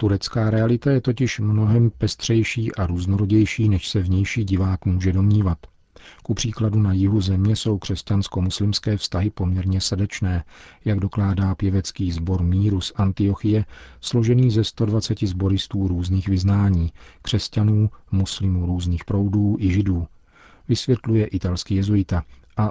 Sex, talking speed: male, 125 wpm